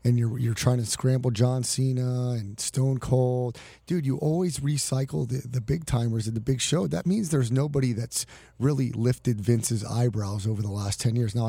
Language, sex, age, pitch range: English, male, 30-49, 120-150 Hz